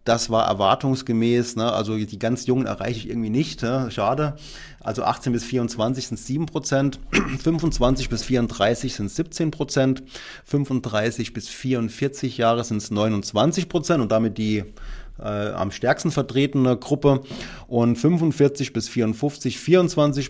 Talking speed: 140 wpm